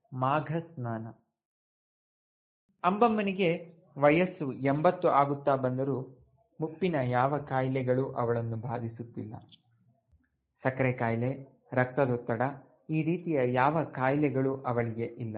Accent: native